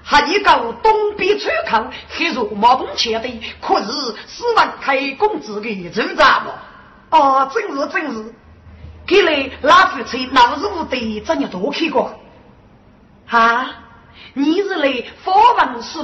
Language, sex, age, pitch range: Chinese, female, 30-49, 260-380 Hz